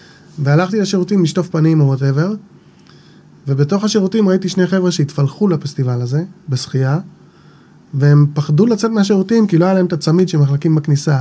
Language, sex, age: Hebrew, male, 20-39